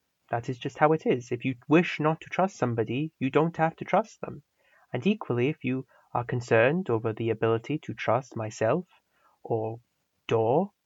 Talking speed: 180 wpm